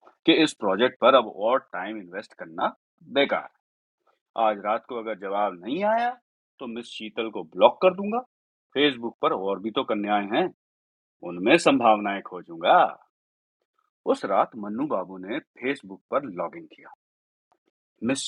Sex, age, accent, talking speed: male, 40-59, native, 145 wpm